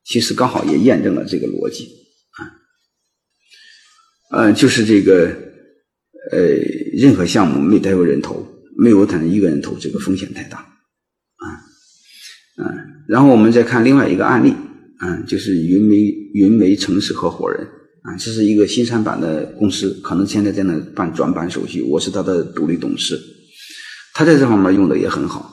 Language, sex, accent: Chinese, male, native